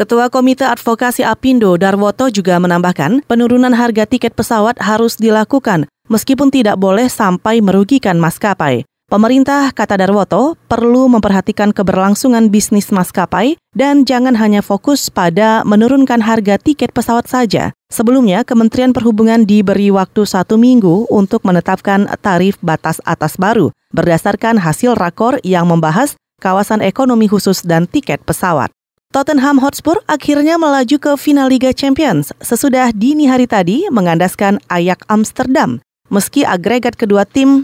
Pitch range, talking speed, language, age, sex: 195-255 Hz, 130 wpm, Indonesian, 30-49, female